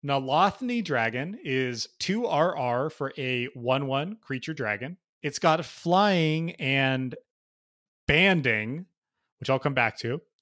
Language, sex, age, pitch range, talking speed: English, male, 30-49, 130-165 Hz, 110 wpm